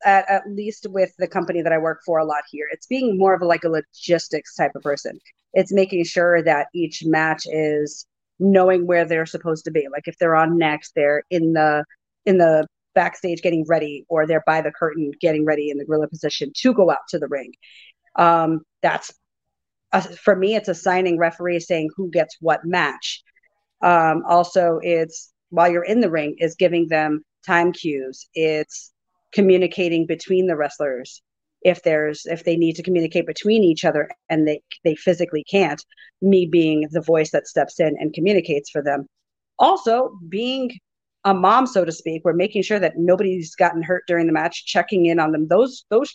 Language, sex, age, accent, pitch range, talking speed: English, female, 40-59, American, 160-190 Hz, 190 wpm